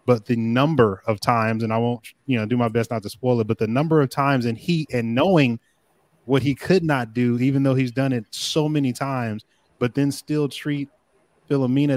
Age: 20-39